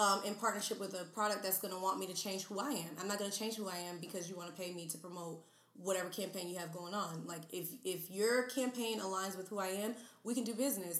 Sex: female